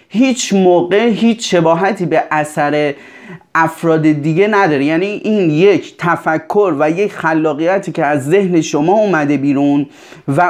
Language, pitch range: Persian, 155-200 Hz